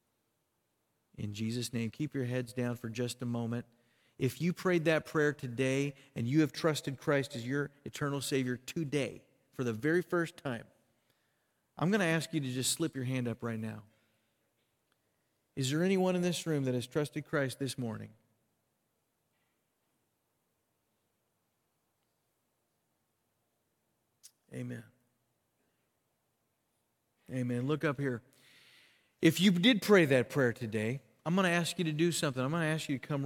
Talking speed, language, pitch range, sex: 150 wpm, English, 120-165 Hz, male